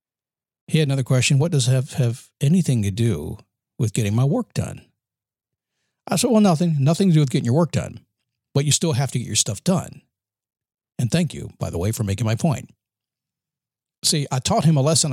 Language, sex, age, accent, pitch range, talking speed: English, male, 50-69, American, 115-150 Hz, 210 wpm